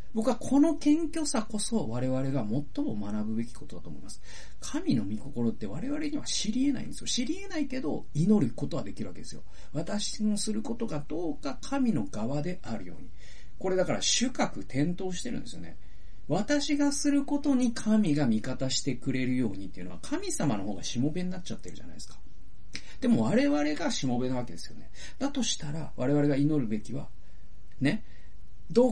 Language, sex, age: Japanese, male, 40-59